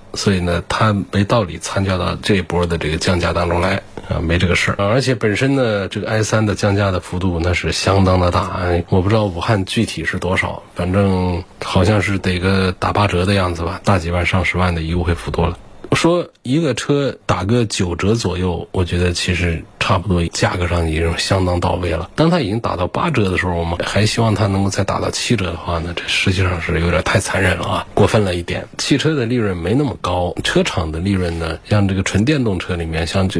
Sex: male